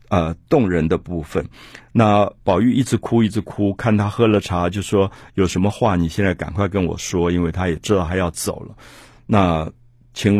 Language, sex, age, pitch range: Chinese, male, 50-69, 90-125 Hz